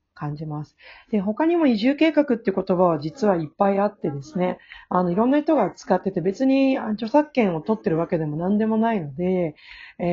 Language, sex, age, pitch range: Japanese, female, 40-59, 170-250 Hz